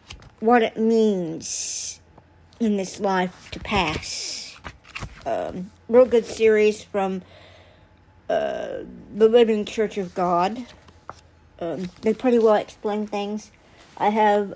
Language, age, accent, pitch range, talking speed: English, 60-79, American, 200-235 Hz, 110 wpm